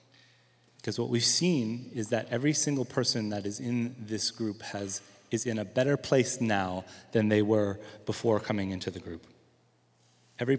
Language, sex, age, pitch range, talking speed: English, male, 30-49, 105-125 Hz, 170 wpm